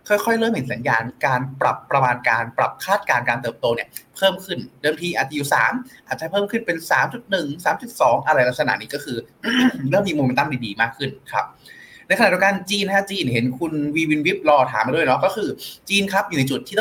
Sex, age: male, 20-39